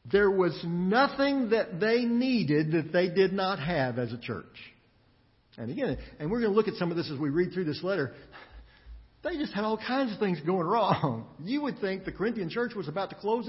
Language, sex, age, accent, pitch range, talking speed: English, male, 50-69, American, 130-205 Hz, 220 wpm